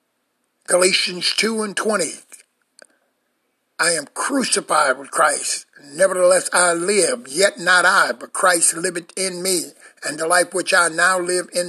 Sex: male